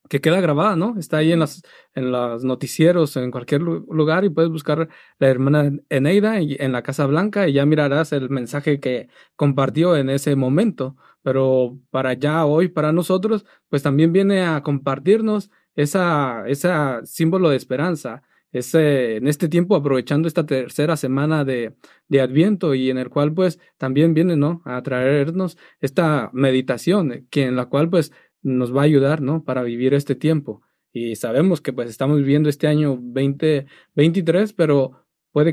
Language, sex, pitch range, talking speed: Spanish, male, 130-160 Hz, 165 wpm